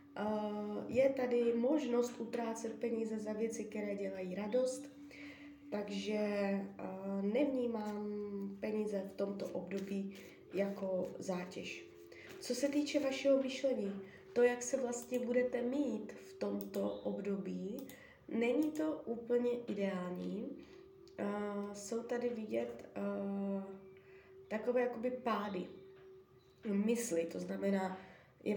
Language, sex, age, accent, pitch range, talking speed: Czech, female, 20-39, native, 195-245 Hz, 95 wpm